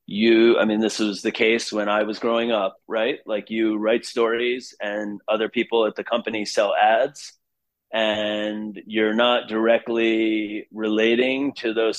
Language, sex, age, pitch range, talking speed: English, male, 30-49, 105-120 Hz, 160 wpm